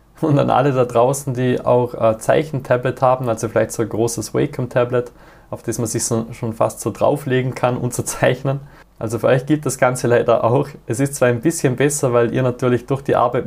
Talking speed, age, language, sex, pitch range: 225 wpm, 20-39, German, male, 120-135 Hz